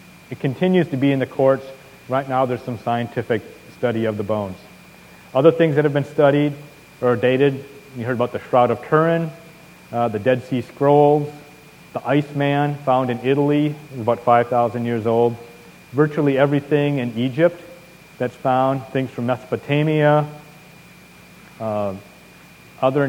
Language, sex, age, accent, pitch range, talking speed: English, male, 40-59, American, 125-150 Hz, 145 wpm